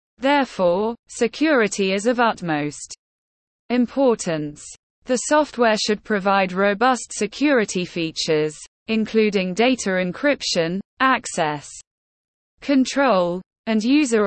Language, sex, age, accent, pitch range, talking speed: English, female, 20-39, British, 185-245 Hz, 85 wpm